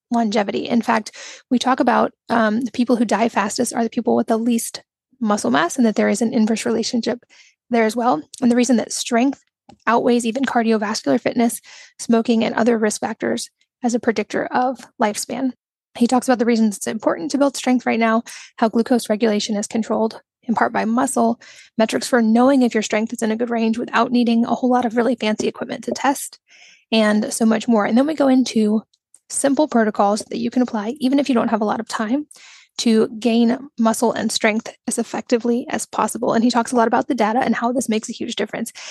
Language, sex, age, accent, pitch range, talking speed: English, female, 10-29, American, 225-250 Hz, 215 wpm